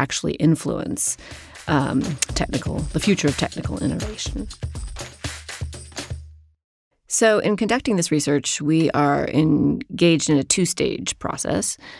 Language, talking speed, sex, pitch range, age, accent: English, 105 wpm, female, 140-175 Hz, 30-49, American